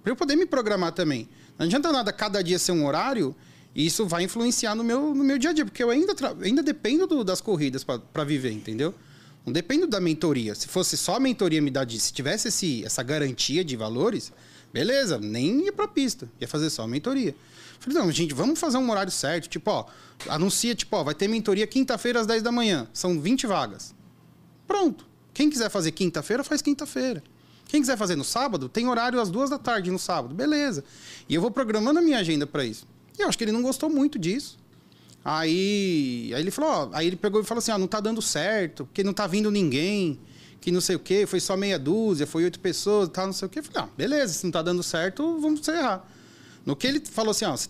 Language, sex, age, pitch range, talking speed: Portuguese, male, 30-49, 160-245 Hz, 225 wpm